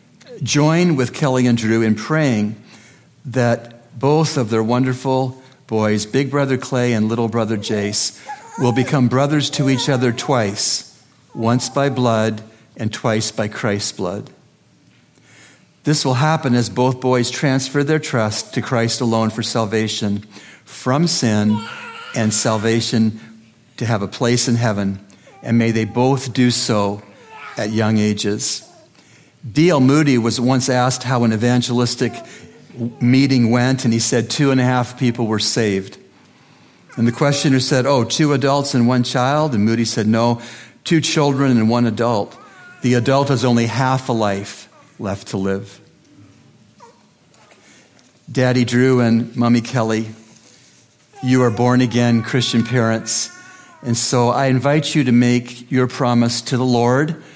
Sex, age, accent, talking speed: male, 60-79, American, 145 wpm